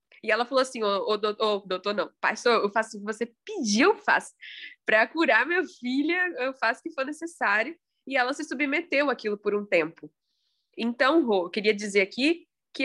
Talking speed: 205 wpm